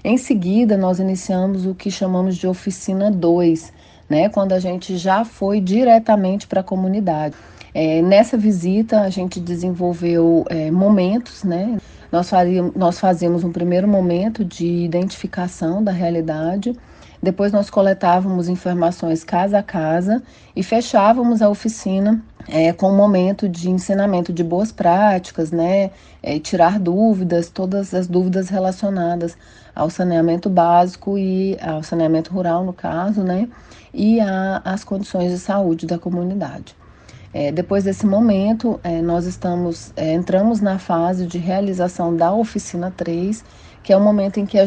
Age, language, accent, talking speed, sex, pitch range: 40-59, Portuguese, Brazilian, 145 wpm, female, 175-205 Hz